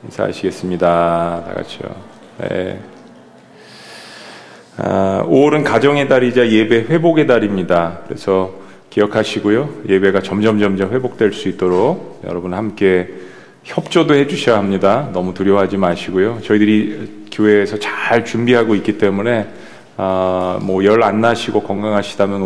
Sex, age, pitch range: male, 40-59, 95-120 Hz